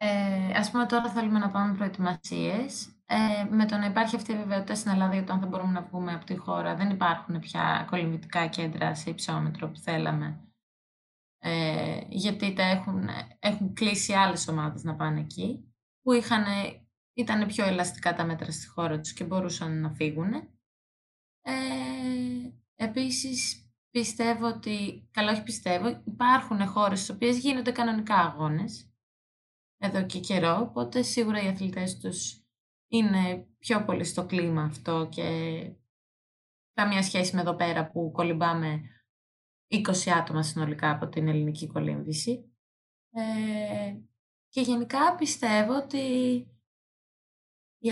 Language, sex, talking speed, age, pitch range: Greek, female, 135 wpm, 20-39, 165-220 Hz